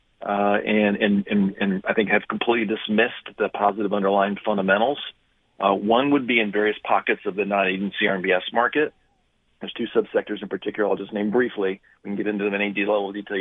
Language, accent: English, American